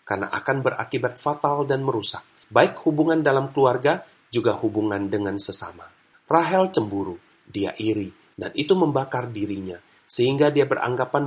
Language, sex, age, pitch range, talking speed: Indonesian, male, 40-59, 115-155 Hz, 135 wpm